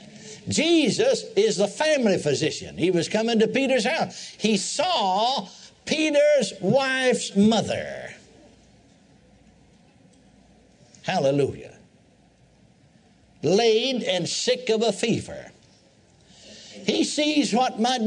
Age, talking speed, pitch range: 60-79, 90 wpm, 190-255 Hz